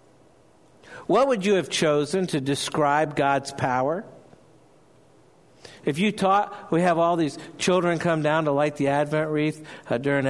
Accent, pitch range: American, 145-180 Hz